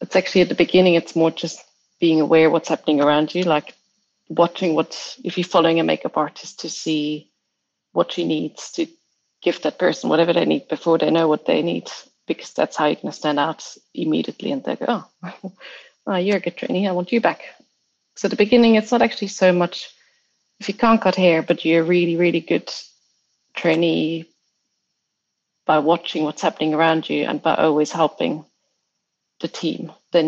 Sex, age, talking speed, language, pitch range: female, 30-49, 190 wpm, English, 160-185 Hz